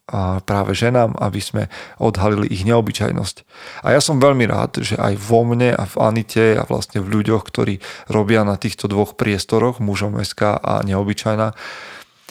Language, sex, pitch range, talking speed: Slovak, male, 105-120 Hz, 160 wpm